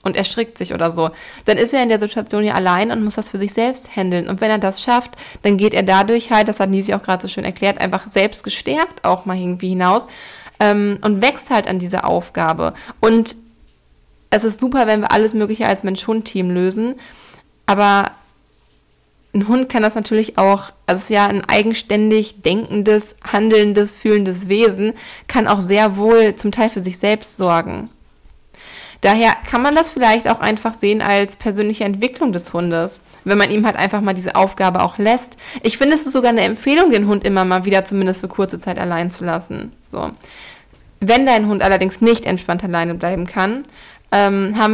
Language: German